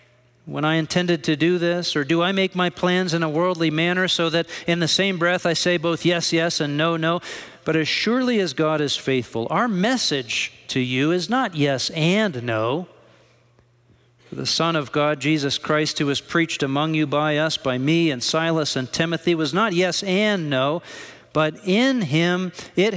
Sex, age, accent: male, 50-69, American